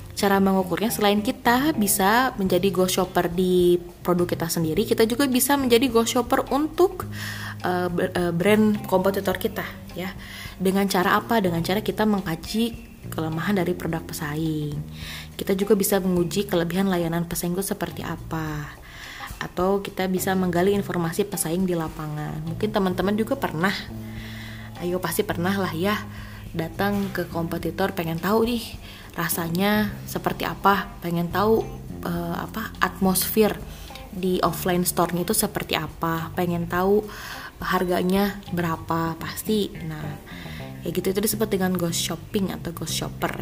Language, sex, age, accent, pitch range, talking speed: Indonesian, female, 20-39, native, 165-200 Hz, 135 wpm